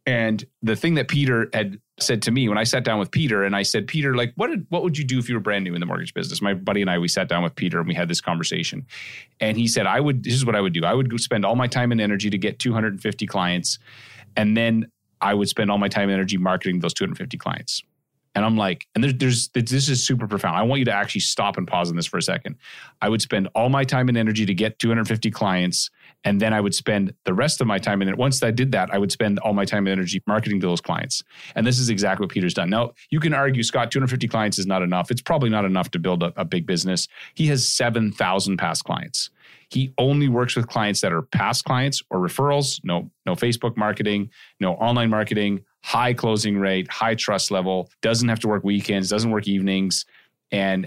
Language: English